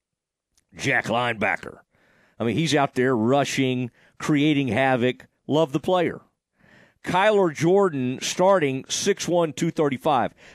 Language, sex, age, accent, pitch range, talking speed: English, male, 50-69, American, 120-170 Hz, 100 wpm